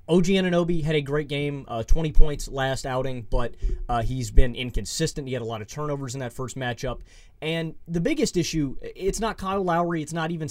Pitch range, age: 125-170 Hz, 30-49